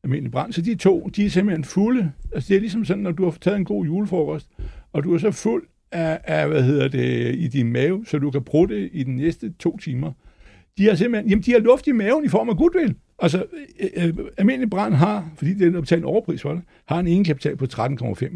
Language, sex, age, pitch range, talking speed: Danish, male, 60-79, 125-185 Hz, 240 wpm